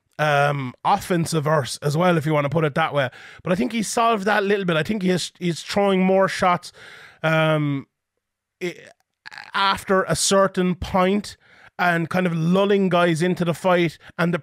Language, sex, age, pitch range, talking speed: English, male, 30-49, 160-190 Hz, 190 wpm